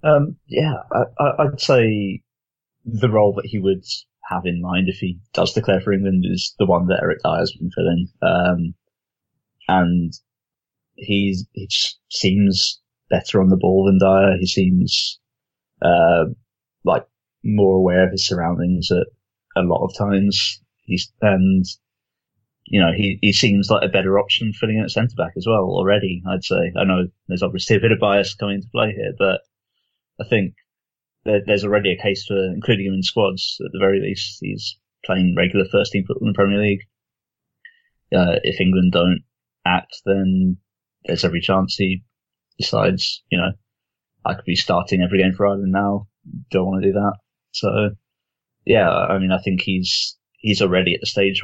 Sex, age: male, 20-39